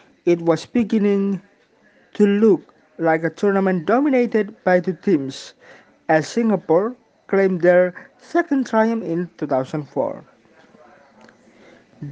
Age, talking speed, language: 50-69, 100 wpm, Indonesian